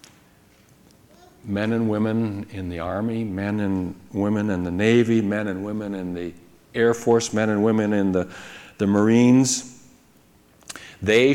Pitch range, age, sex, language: 85-105 Hz, 60-79, male, English